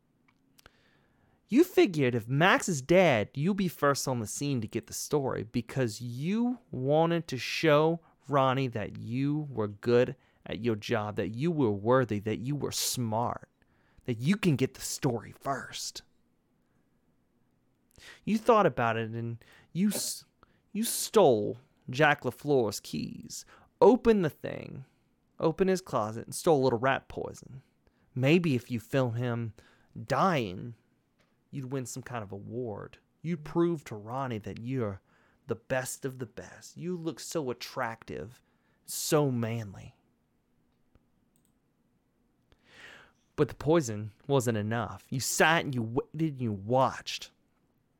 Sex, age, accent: male, 30-49, American